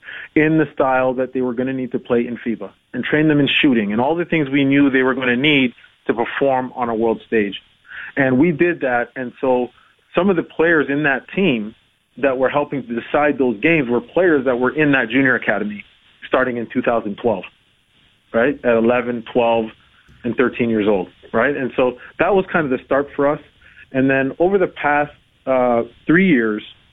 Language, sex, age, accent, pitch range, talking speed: English, male, 30-49, American, 120-145 Hz, 205 wpm